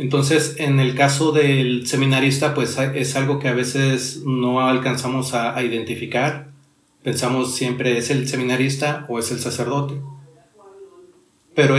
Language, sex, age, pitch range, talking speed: Spanish, male, 40-59, 125-145 Hz, 135 wpm